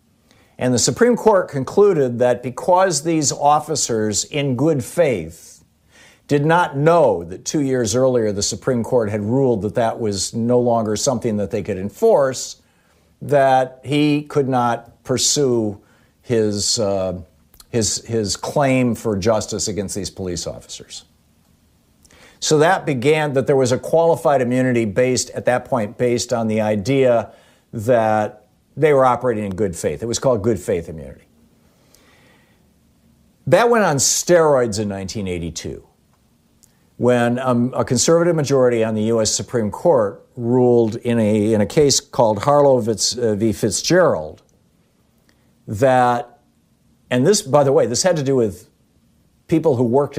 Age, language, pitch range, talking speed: 50-69, English, 105-140 Hz, 145 wpm